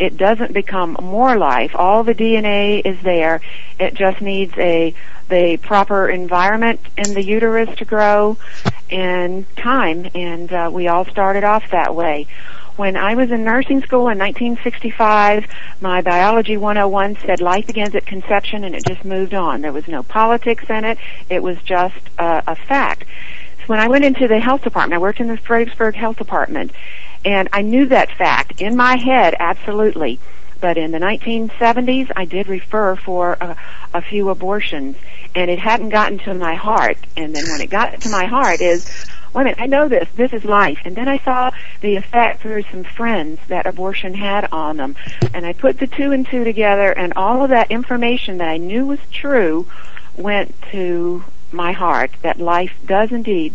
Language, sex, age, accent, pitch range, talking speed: English, female, 50-69, American, 180-225 Hz, 185 wpm